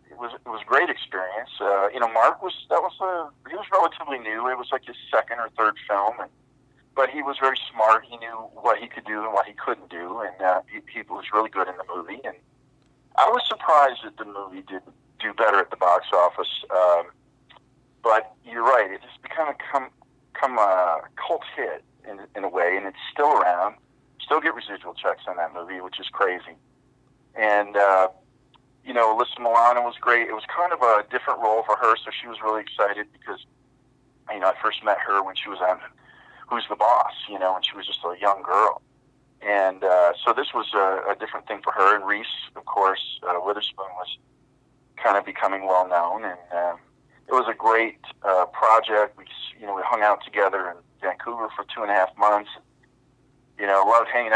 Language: English